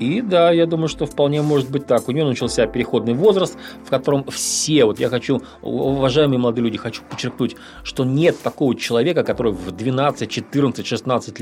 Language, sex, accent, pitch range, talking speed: Russian, male, native, 115-145 Hz, 180 wpm